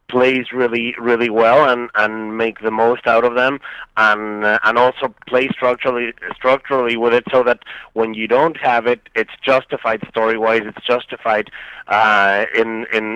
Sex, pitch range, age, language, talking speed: male, 115-130 Hz, 30-49, English, 185 wpm